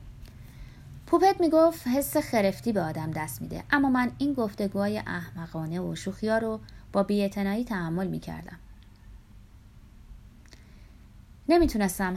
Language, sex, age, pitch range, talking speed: Persian, female, 30-49, 170-230 Hz, 105 wpm